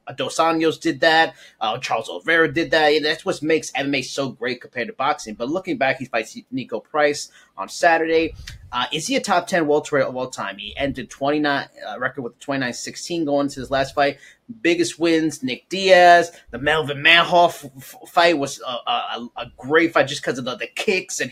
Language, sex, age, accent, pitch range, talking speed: English, male, 30-49, American, 140-165 Hz, 205 wpm